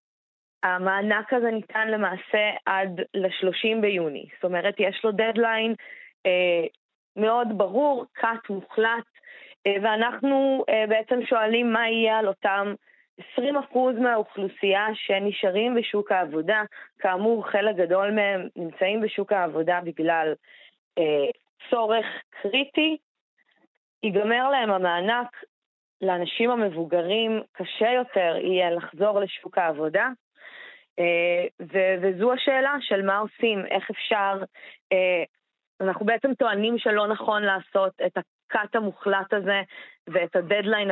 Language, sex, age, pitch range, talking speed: Hebrew, female, 20-39, 190-225 Hz, 105 wpm